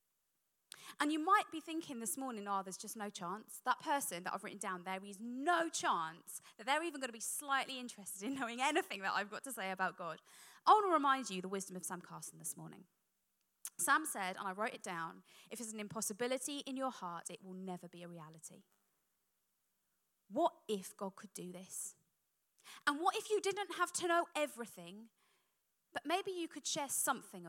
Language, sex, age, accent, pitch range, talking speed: English, female, 20-39, British, 195-285 Hz, 205 wpm